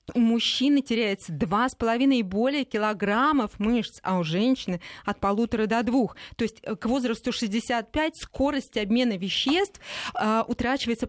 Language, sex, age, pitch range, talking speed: Russian, female, 20-39, 210-260 Hz, 135 wpm